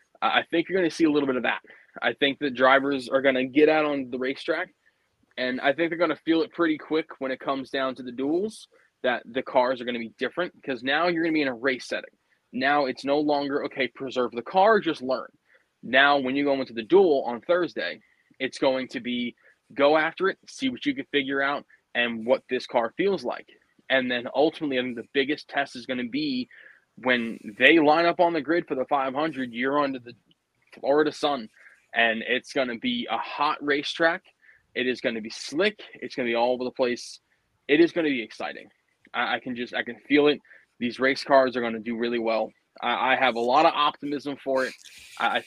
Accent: American